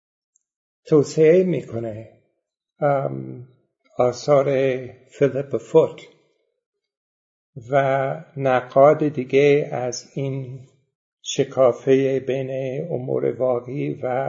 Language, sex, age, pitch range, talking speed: Persian, male, 60-79, 130-170 Hz, 65 wpm